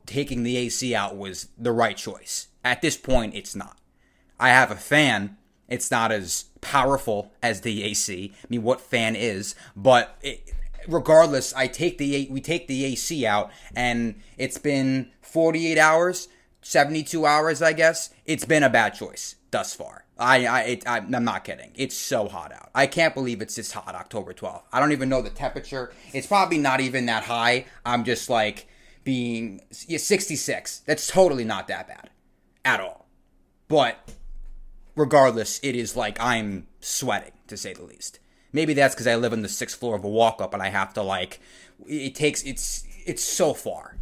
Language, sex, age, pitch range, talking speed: English, male, 20-39, 105-140 Hz, 185 wpm